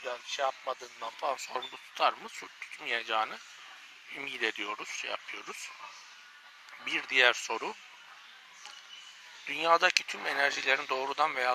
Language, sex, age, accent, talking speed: Turkish, male, 60-79, native, 100 wpm